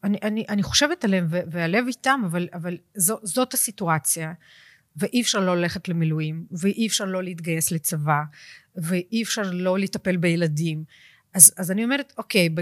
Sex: female